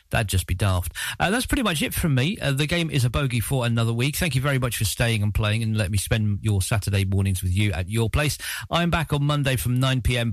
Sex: male